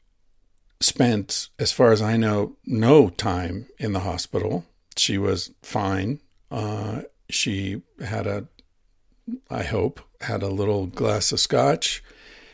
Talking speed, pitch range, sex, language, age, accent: 125 wpm, 95-115 Hz, male, English, 50-69, American